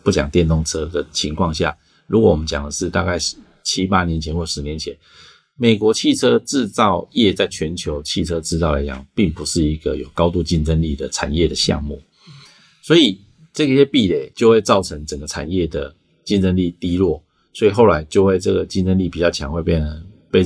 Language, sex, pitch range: Chinese, male, 80-100 Hz